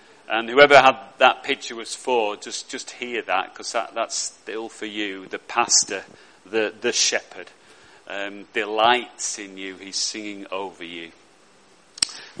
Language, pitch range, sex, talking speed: English, 130-160 Hz, male, 150 wpm